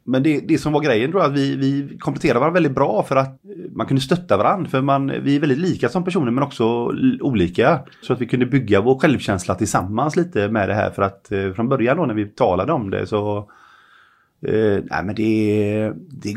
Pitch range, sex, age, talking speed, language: 95-130 Hz, male, 30-49, 215 wpm, Swedish